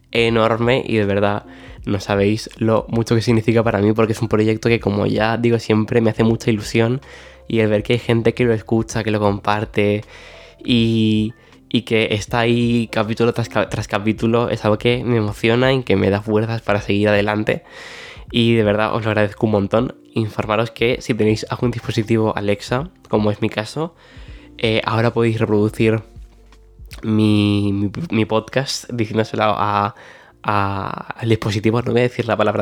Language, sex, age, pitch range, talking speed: Spanish, male, 10-29, 105-120 Hz, 175 wpm